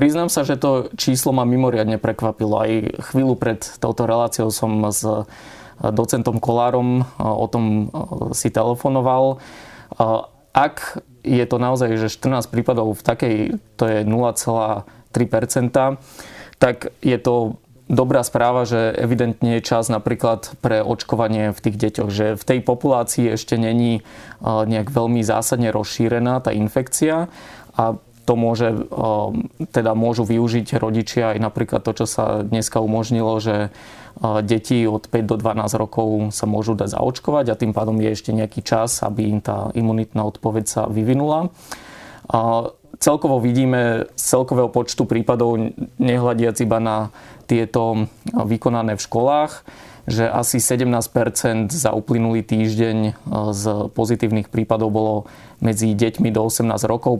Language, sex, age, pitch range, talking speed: Slovak, male, 20-39, 110-120 Hz, 135 wpm